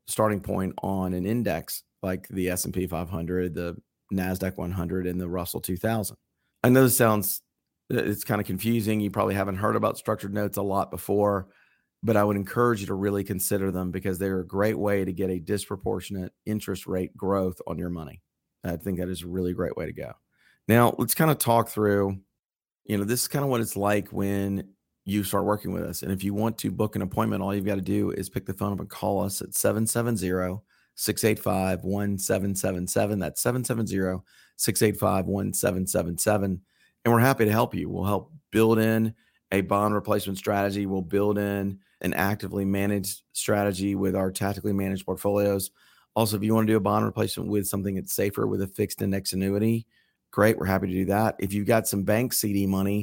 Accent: American